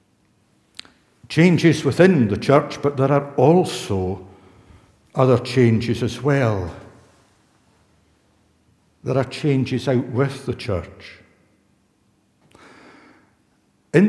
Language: English